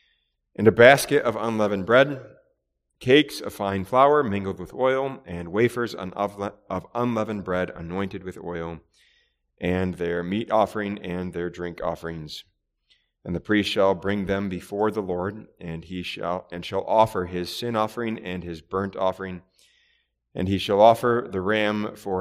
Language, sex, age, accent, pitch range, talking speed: English, male, 30-49, American, 85-110 Hz, 155 wpm